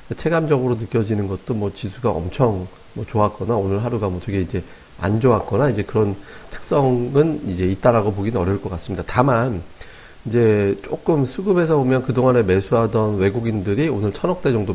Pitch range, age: 100-130 Hz, 40-59